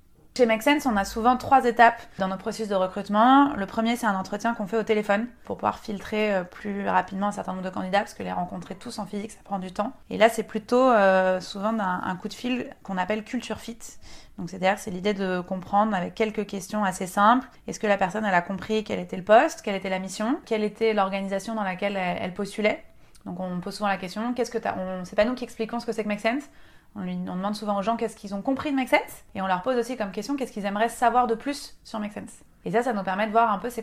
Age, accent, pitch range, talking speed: 20-39, French, 195-230 Hz, 265 wpm